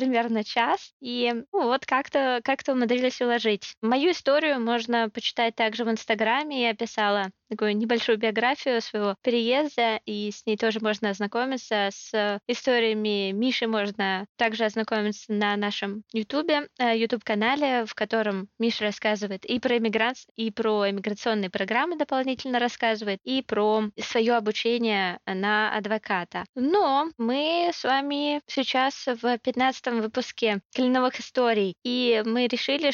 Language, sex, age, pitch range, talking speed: Russian, female, 20-39, 215-255 Hz, 130 wpm